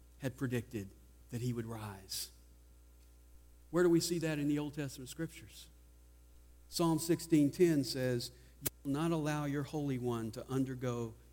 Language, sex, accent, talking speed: English, male, American, 150 wpm